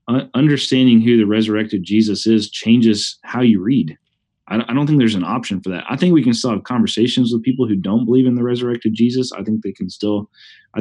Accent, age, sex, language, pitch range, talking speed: American, 30-49, male, English, 105-120 Hz, 220 wpm